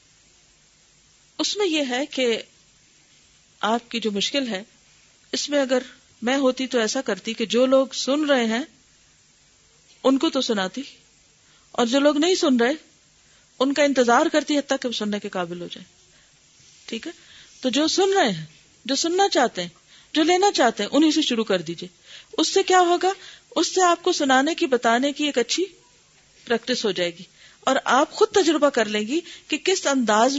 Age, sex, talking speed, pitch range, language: 40-59, female, 185 wpm, 230-320 Hz, Urdu